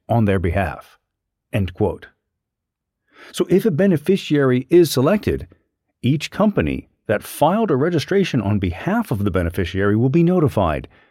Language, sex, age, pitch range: English, male, 40-59, 100-170 Hz